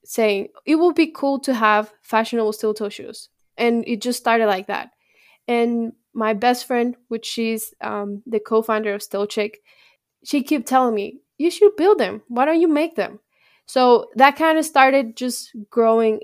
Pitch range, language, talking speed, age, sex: 215-245 Hz, English, 180 wpm, 10-29, female